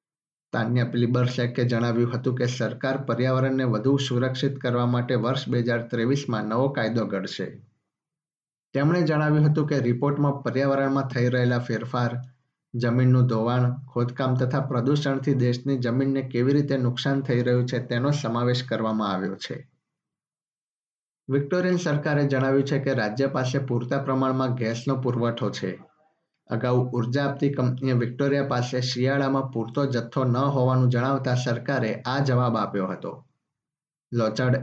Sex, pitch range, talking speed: male, 120-140 Hz, 85 wpm